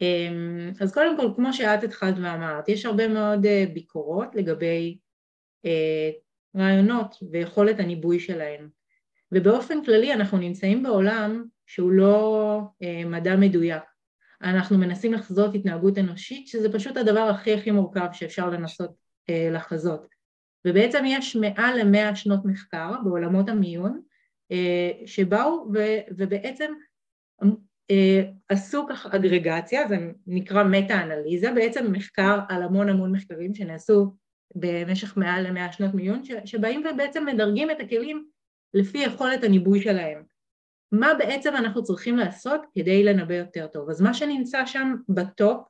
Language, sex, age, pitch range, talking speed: Hebrew, female, 30-49, 185-230 Hz, 120 wpm